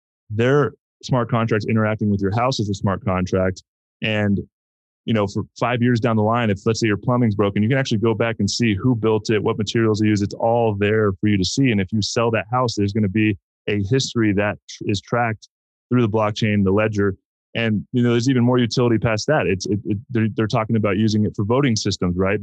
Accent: American